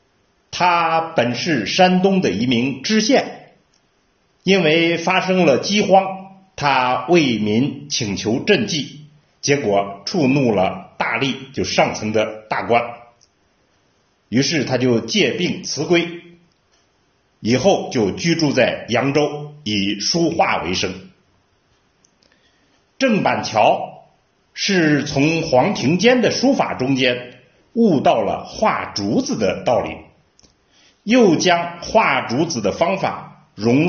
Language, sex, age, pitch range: Chinese, male, 50-69, 120-185 Hz